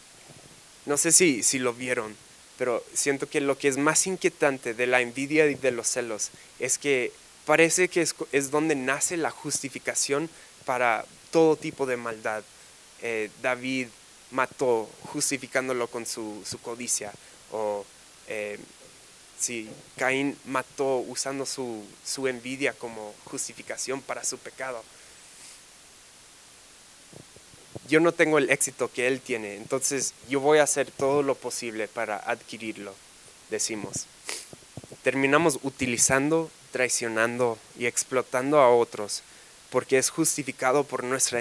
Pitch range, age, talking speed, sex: 120-145 Hz, 20-39, 130 wpm, male